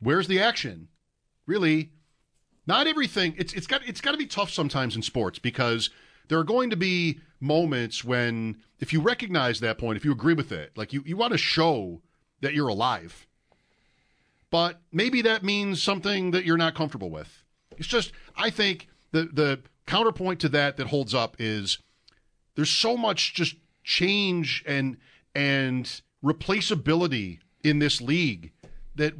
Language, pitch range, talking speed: English, 125-175 Hz, 160 wpm